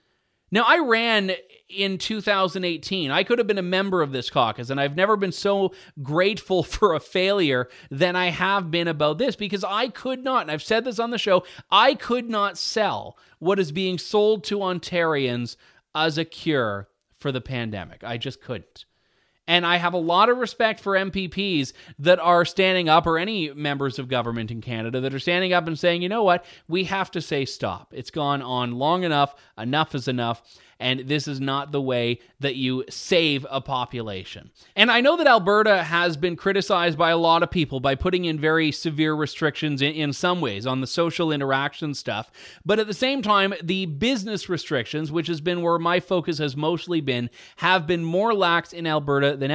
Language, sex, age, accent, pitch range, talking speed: English, male, 30-49, American, 140-185 Hz, 200 wpm